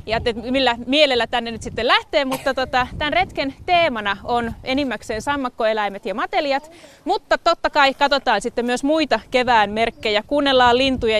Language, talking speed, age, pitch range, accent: Finnish, 150 wpm, 30-49, 225-300 Hz, native